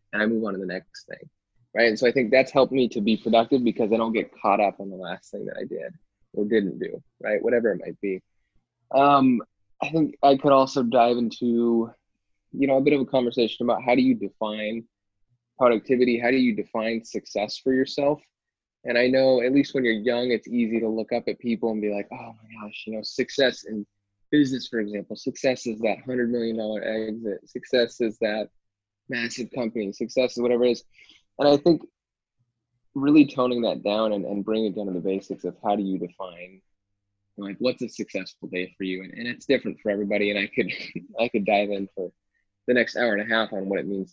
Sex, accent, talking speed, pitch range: male, American, 220 wpm, 100-125 Hz